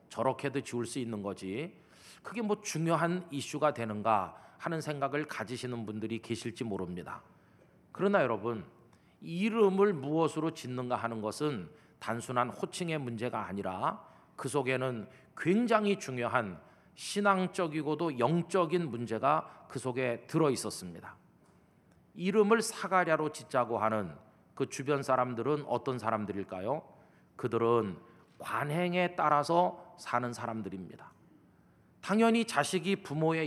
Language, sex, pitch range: Korean, male, 120-175 Hz